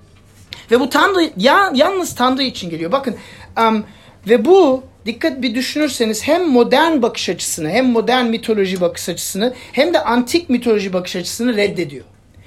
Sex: male